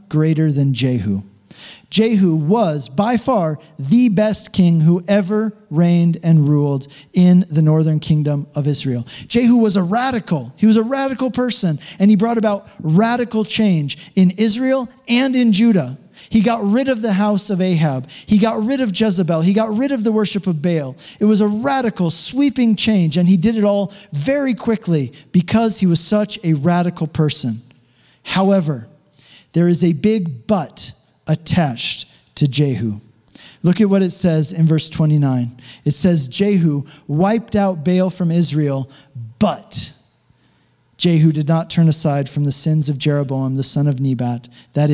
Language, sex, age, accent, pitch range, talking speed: English, male, 40-59, American, 145-205 Hz, 165 wpm